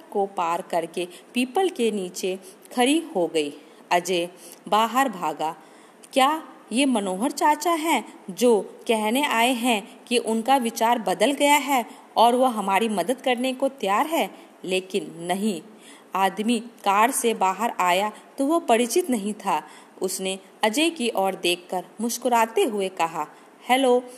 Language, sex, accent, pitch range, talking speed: Hindi, female, native, 185-255 Hz, 135 wpm